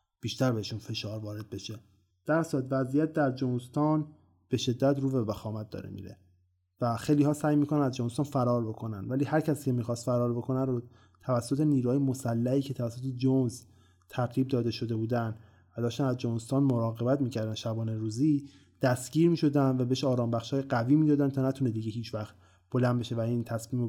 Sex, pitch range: male, 115-135 Hz